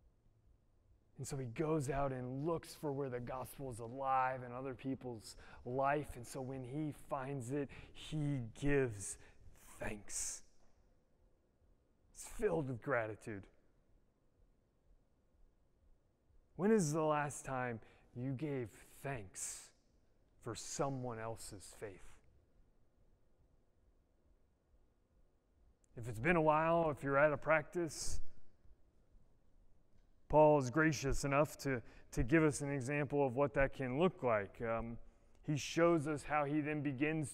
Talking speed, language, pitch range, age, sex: 120 wpm, English, 110-160 Hz, 30-49, male